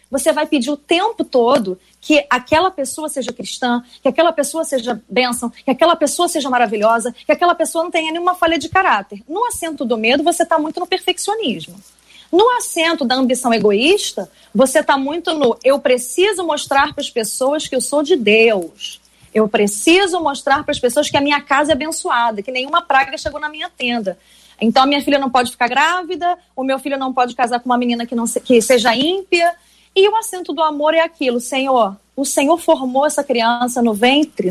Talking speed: 200 wpm